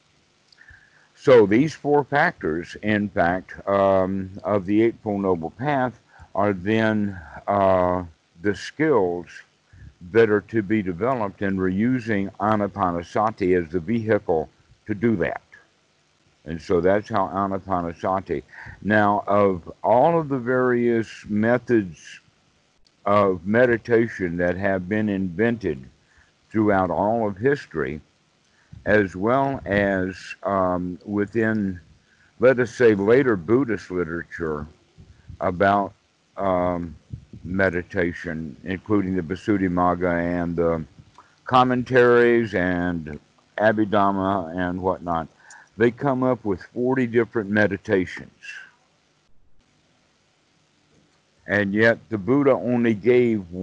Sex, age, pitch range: male, 60-79, 90-115 Hz